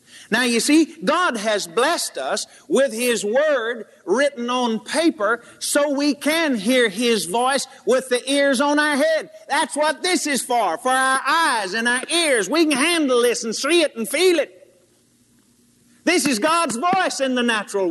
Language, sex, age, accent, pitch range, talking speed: English, male, 50-69, American, 205-300 Hz, 180 wpm